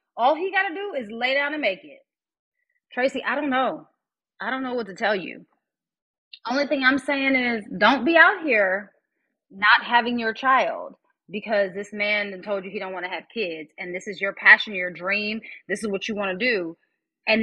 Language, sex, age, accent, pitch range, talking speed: English, female, 30-49, American, 190-275 Hz, 210 wpm